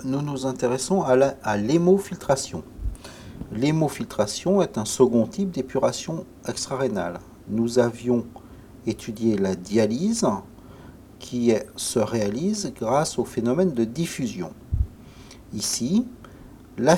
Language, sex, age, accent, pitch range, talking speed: French, male, 50-69, French, 110-140 Hz, 105 wpm